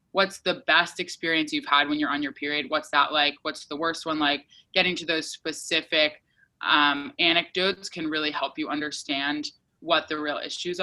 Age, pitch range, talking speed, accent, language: 20-39, 150-180 Hz, 190 wpm, American, English